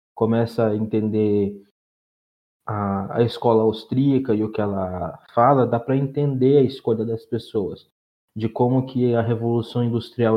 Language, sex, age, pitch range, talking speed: Portuguese, male, 20-39, 115-135 Hz, 145 wpm